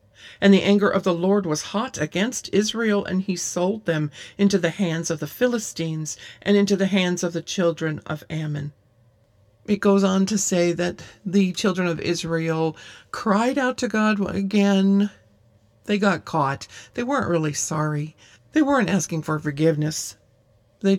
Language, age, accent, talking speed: English, 50-69, American, 165 wpm